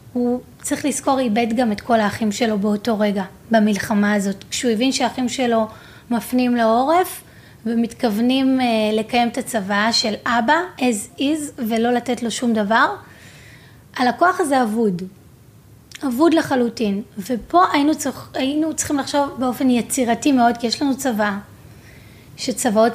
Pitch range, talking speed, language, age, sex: 210-265 Hz, 135 wpm, Hebrew, 30-49, female